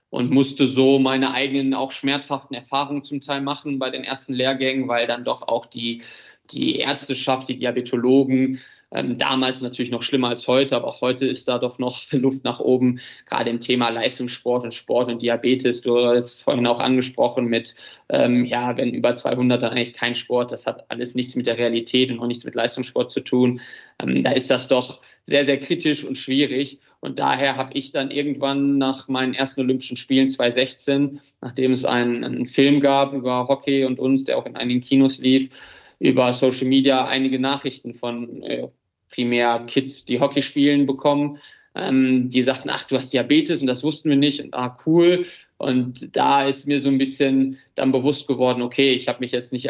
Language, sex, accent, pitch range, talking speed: German, male, German, 125-135 Hz, 195 wpm